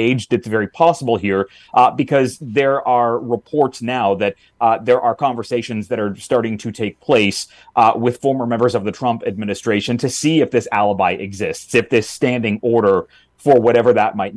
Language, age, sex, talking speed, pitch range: English, 30-49, male, 180 wpm, 105-125 Hz